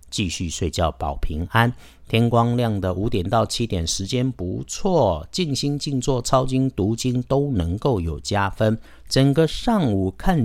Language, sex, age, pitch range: Chinese, male, 50-69, 85-120 Hz